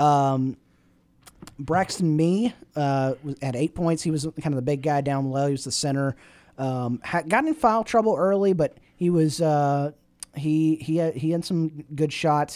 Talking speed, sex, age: 195 wpm, male, 30-49